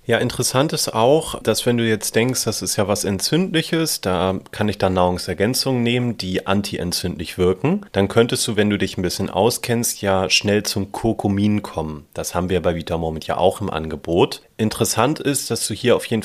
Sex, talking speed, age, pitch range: male, 195 wpm, 30-49, 90-120 Hz